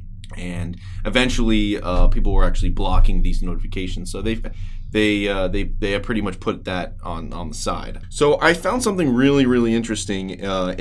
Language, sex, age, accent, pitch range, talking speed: English, male, 20-39, American, 95-120 Hz, 170 wpm